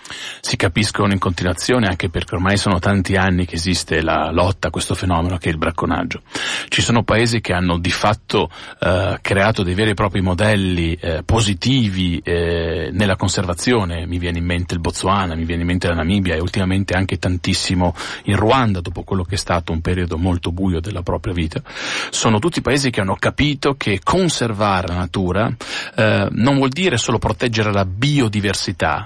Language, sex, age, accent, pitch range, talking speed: Italian, male, 40-59, native, 90-125 Hz, 180 wpm